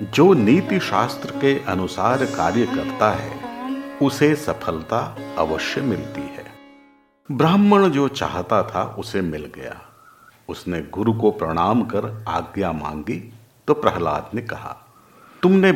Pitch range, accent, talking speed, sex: 90-140 Hz, native, 120 wpm, male